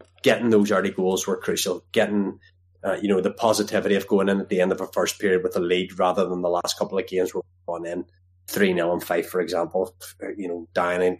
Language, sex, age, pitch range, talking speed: English, male, 20-39, 90-105 Hz, 230 wpm